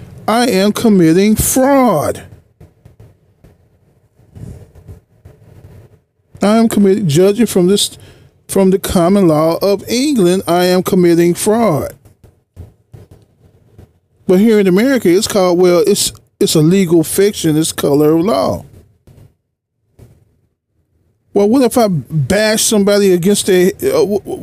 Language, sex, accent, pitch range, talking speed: English, male, American, 120-190 Hz, 115 wpm